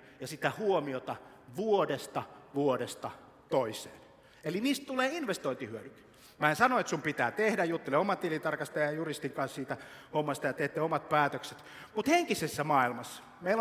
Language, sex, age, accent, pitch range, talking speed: Finnish, male, 60-79, native, 130-190 Hz, 145 wpm